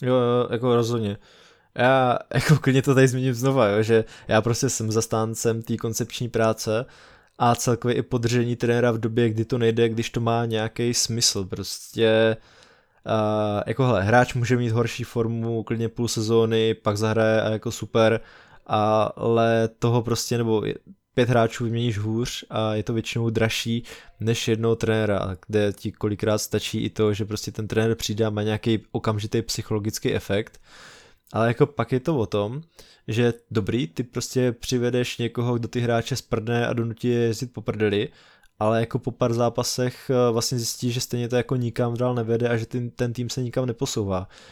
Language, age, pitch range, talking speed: Czech, 20-39, 110-125 Hz, 175 wpm